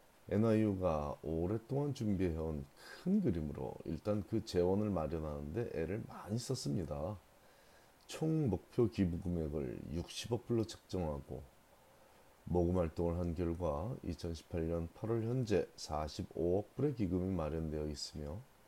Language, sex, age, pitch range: Korean, male, 30-49, 80-110 Hz